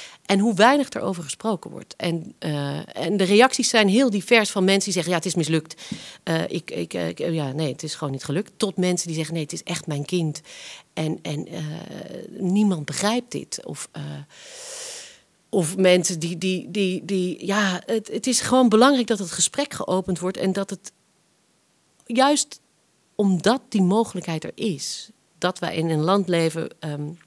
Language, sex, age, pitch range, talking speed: English, female, 40-59, 160-205 Hz, 190 wpm